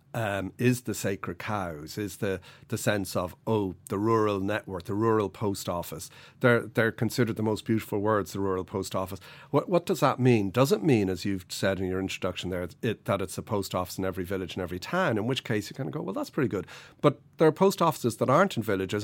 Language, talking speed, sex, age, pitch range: English, 235 wpm, male, 40-59, 95-125 Hz